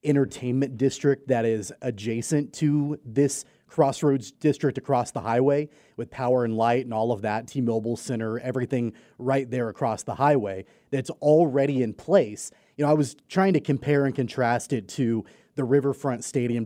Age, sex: 30-49, male